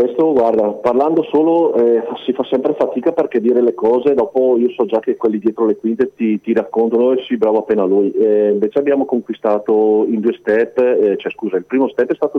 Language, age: Italian, 40-59